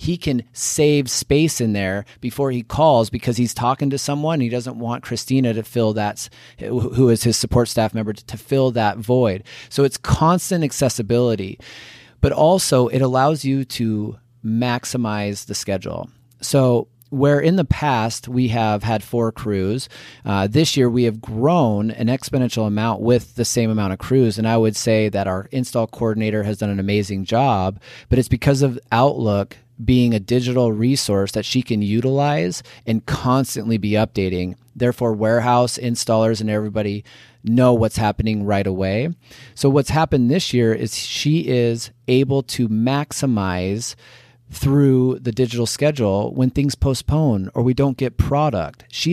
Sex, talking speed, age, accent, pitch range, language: male, 165 wpm, 30-49, American, 110-130 Hz, English